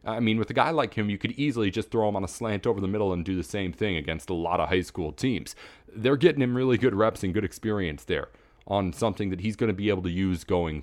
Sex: male